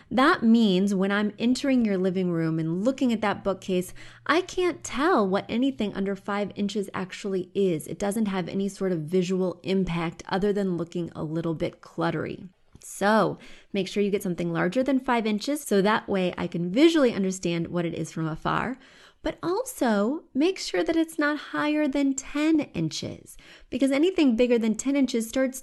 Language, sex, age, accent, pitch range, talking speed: English, female, 20-39, American, 175-240 Hz, 185 wpm